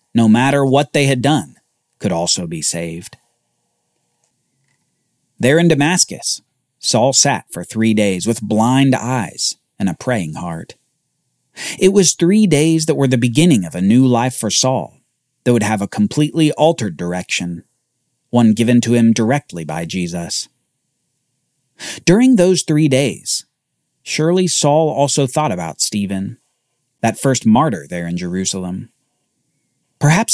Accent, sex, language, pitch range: American, male, English, 110-155 Hz